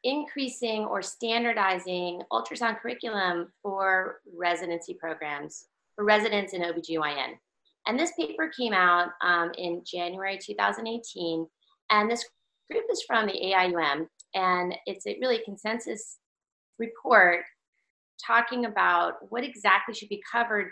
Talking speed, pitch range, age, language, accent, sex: 120 wpm, 175-230 Hz, 30-49, English, American, female